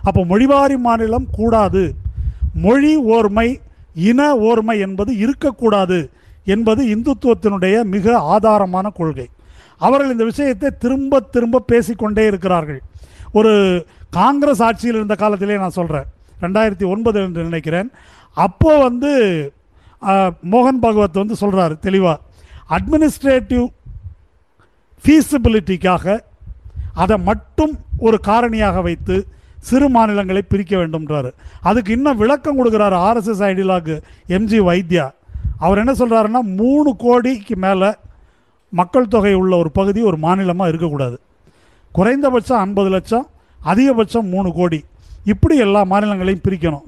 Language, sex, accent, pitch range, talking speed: Tamil, male, native, 185-240 Hz, 105 wpm